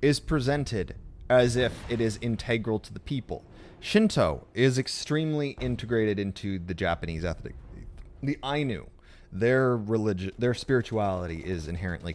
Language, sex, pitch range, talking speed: English, male, 90-125 Hz, 130 wpm